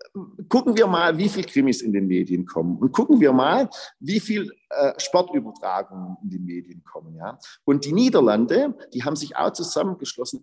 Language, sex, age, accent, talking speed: German, male, 50-69, German, 180 wpm